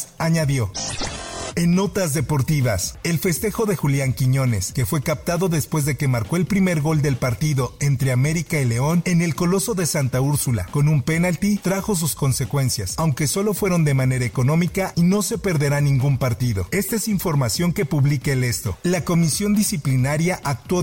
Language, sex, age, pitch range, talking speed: Spanish, male, 50-69, 130-175 Hz, 175 wpm